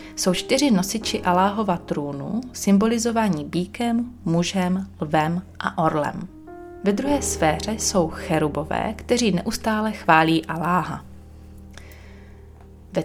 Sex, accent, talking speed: female, native, 95 wpm